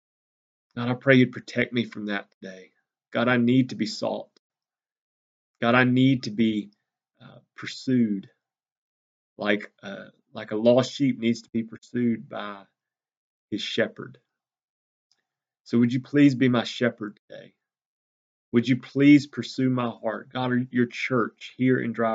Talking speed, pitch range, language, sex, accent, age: 150 wpm, 110-130 Hz, English, male, American, 30-49